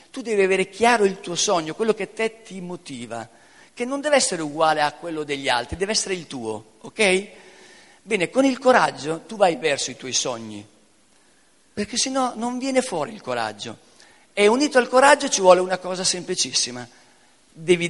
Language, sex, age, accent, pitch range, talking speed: Spanish, male, 50-69, Italian, 160-220 Hz, 180 wpm